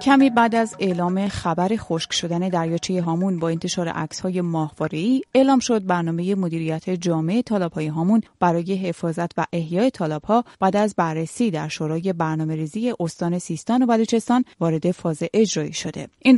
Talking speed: 150 wpm